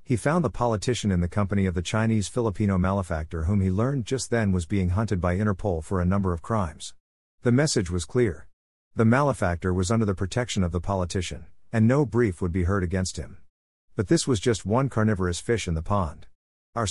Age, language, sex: 50-69, English, male